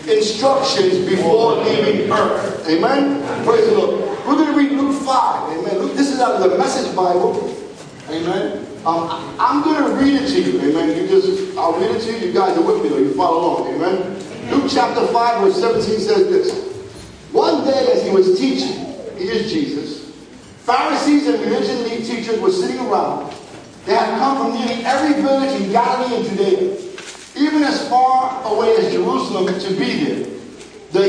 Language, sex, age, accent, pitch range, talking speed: English, male, 40-59, American, 200-310 Hz, 185 wpm